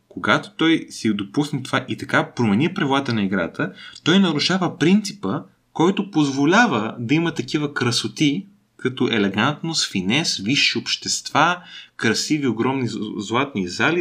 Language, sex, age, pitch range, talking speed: Bulgarian, male, 30-49, 110-160 Hz, 125 wpm